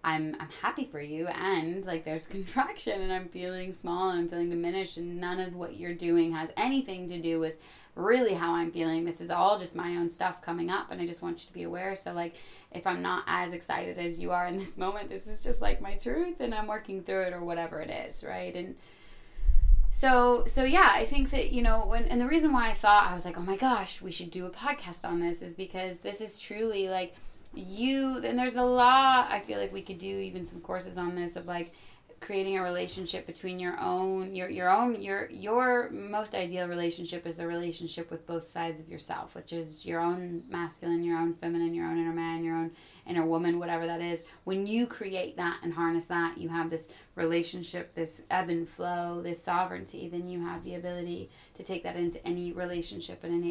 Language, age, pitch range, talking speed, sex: English, 20-39, 170-195 Hz, 225 wpm, female